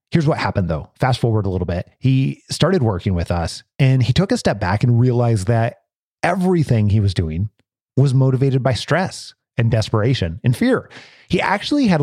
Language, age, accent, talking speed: English, 30-49, American, 190 wpm